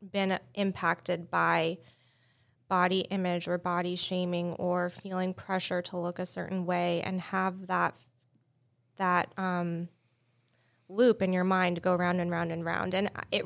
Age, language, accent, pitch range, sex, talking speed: 20-39, English, American, 170-195 Hz, female, 145 wpm